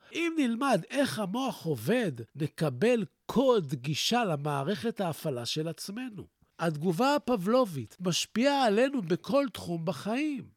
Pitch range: 165-255 Hz